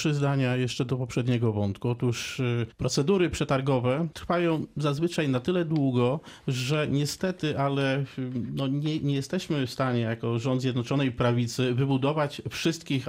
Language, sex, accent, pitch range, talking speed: Polish, male, native, 125-150 Hz, 130 wpm